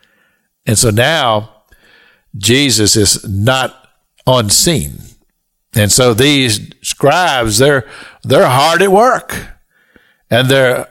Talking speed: 100 wpm